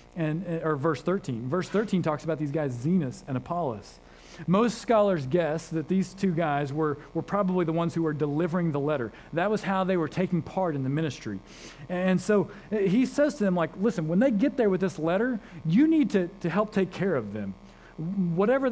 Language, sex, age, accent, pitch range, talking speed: English, male, 40-59, American, 130-185 Hz, 210 wpm